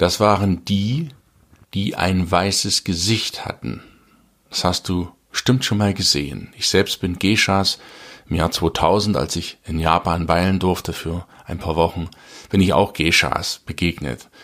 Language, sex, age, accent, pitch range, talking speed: German, male, 50-69, German, 85-105 Hz, 155 wpm